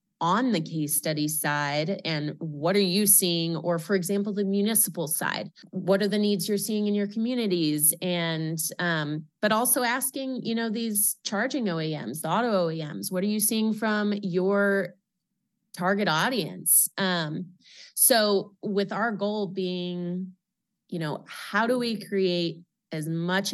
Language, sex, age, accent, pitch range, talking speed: English, female, 30-49, American, 165-205 Hz, 155 wpm